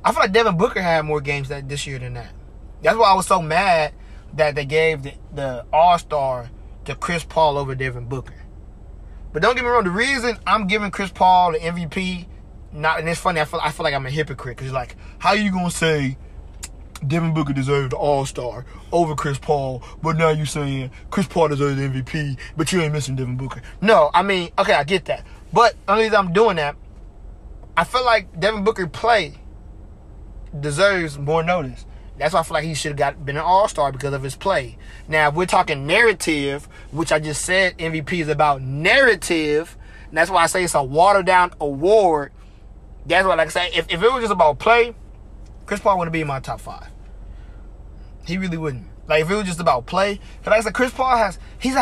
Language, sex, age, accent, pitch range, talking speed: English, male, 20-39, American, 140-190 Hz, 220 wpm